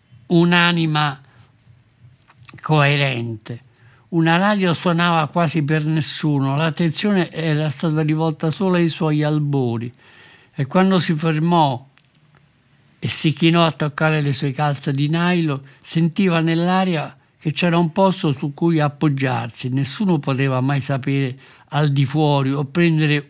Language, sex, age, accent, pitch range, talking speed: Italian, male, 60-79, native, 135-160 Hz, 125 wpm